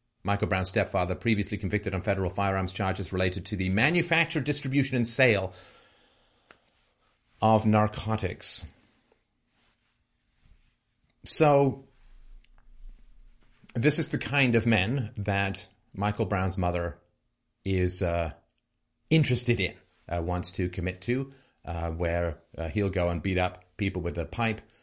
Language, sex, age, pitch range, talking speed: English, male, 40-59, 90-115 Hz, 120 wpm